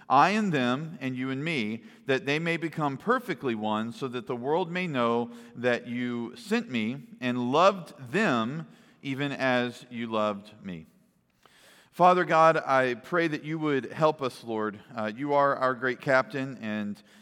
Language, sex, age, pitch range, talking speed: English, male, 40-59, 115-150 Hz, 165 wpm